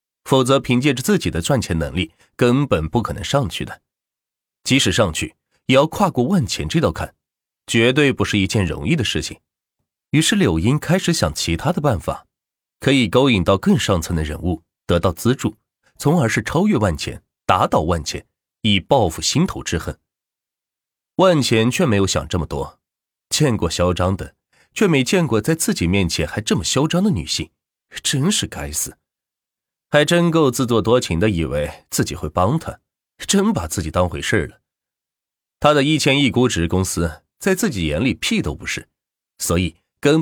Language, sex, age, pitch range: Chinese, male, 30-49, 85-140 Hz